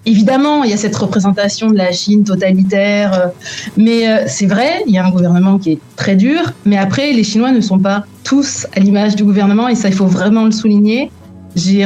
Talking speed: 215 wpm